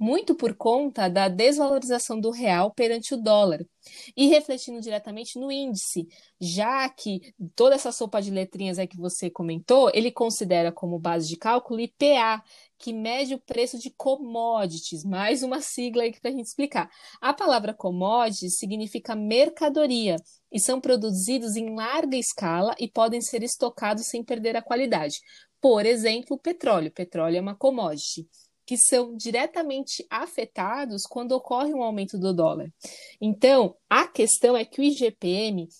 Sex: female